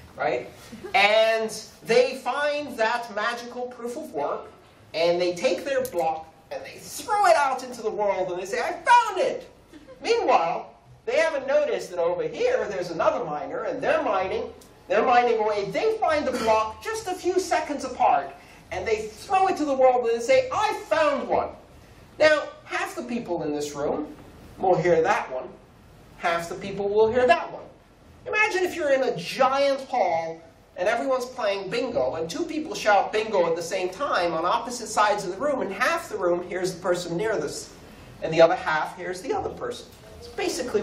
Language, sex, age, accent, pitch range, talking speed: English, male, 40-59, American, 200-330 Hz, 190 wpm